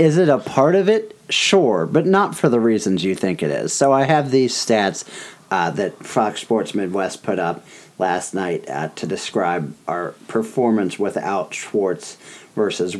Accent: American